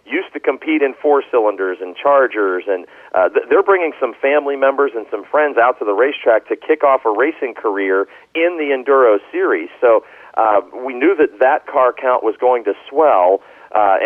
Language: English